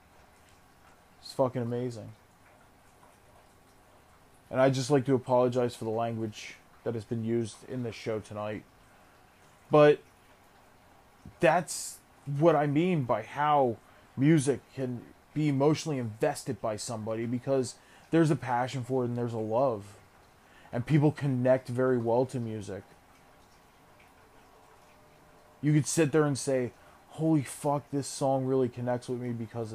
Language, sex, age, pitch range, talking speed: English, male, 20-39, 110-135 Hz, 135 wpm